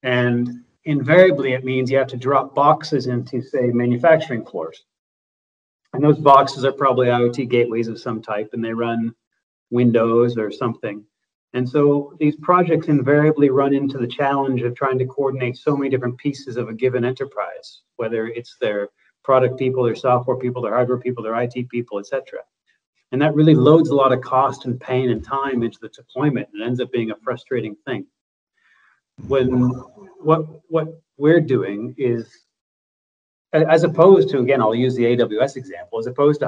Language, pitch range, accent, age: English, 120-140 Hz, American, 30-49